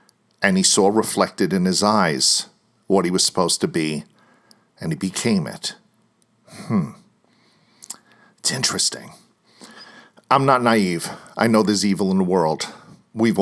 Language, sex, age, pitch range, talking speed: English, male, 50-69, 100-125 Hz, 140 wpm